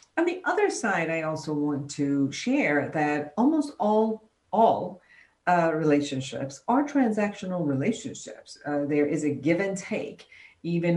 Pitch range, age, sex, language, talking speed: 145-195 Hz, 50-69, female, English, 140 wpm